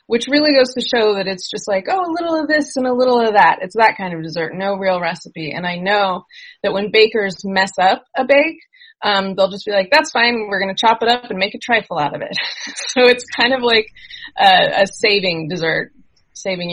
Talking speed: 240 wpm